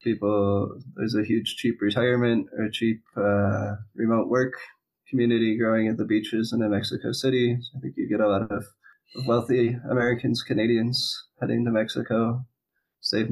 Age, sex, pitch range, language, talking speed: 20-39, male, 110-125 Hz, English, 160 wpm